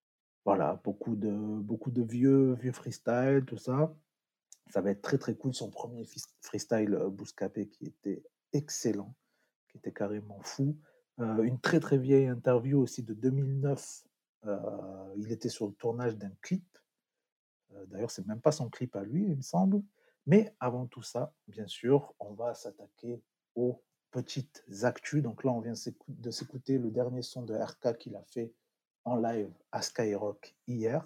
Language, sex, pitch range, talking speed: French, male, 110-135 Hz, 170 wpm